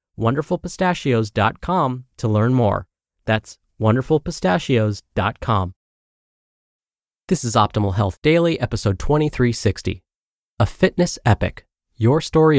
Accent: American